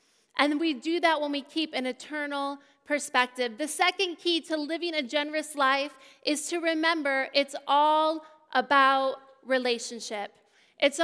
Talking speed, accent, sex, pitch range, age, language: 140 wpm, American, female, 265-320 Hz, 30-49, English